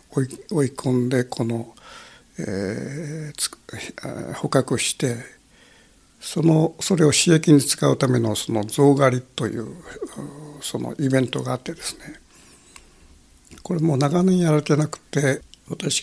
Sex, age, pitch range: male, 60-79, 120-155 Hz